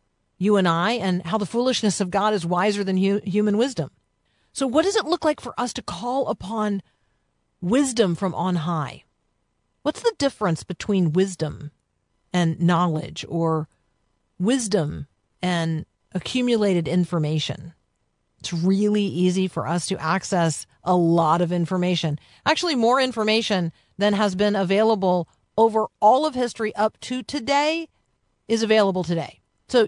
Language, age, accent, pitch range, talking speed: English, 50-69, American, 170-230 Hz, 140 wpm